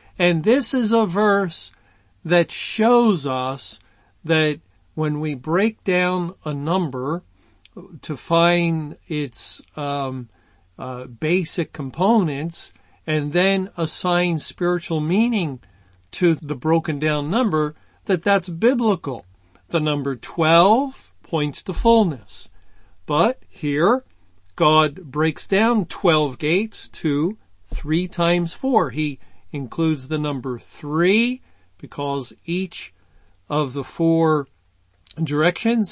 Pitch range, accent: 135-175 Hz, American